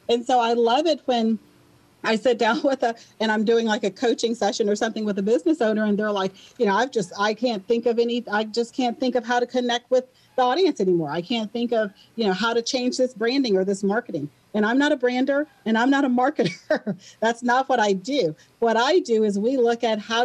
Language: English